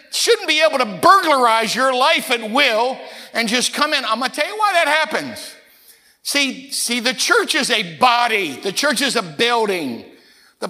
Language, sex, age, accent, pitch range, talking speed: English, male, 50-69, American, 240-295 Hz, 190 wpm